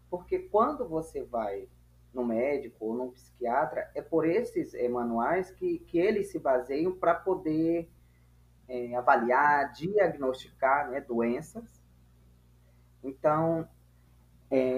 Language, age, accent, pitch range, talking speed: Portuguese, 20-39, Brazilian, 115-185 Hz, 105 wpm